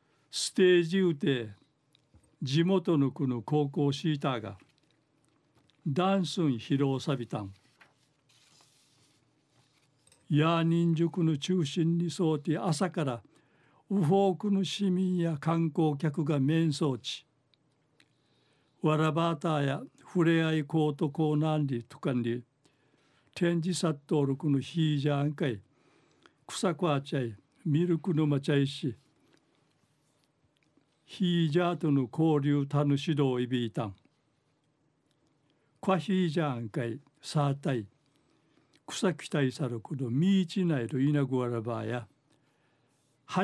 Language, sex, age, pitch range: Japanese, male, 60-79, 140-165 Hz